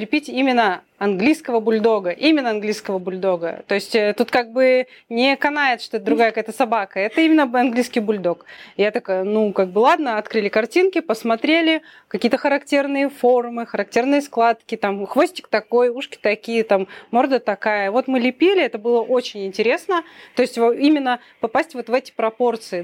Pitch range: 210-275 Hz